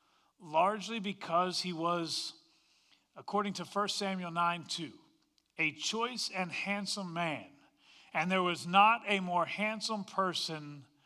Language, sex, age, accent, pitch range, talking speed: English, male, 40-59, American, 165-230 Hz, 125 wpm